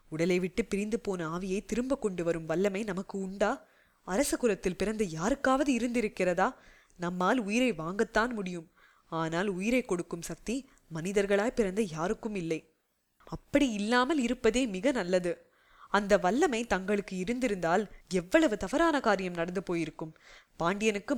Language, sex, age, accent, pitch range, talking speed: English, female, 20-39, Indian, 175-235 Hz, 120 wpm